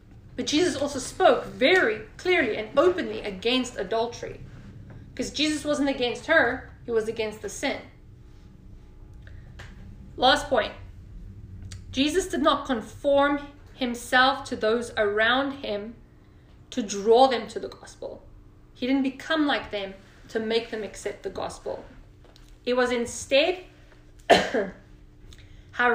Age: 30-49